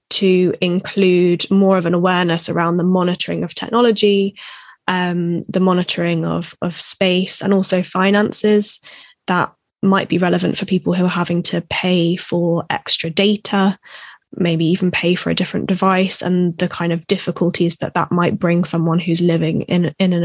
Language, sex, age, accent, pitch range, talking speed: English, female, 10-29, British, 170-195 Hz, 165 wpm